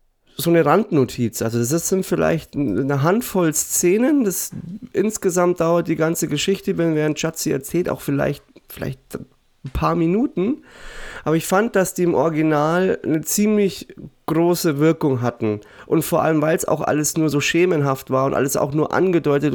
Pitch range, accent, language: 135-175 Hz, German, German